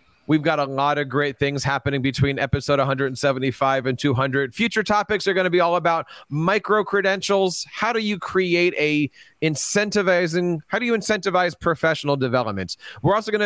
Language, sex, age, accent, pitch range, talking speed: English, male, 30-49, American, 140-185 Hz, 170 wpm